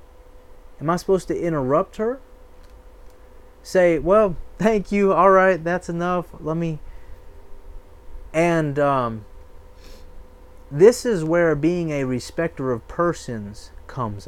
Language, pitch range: English, 110-175 Hz